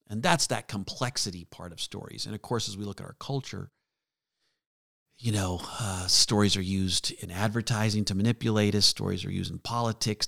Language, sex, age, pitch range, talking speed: English, male, 50-69, 95-125 Hz, 185 wpm